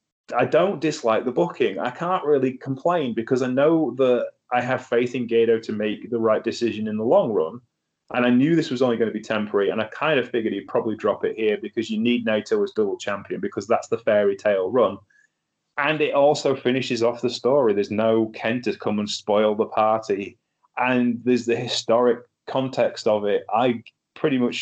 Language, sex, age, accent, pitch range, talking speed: English, male, 20-39, British, 105-125 Hz, 210 wpm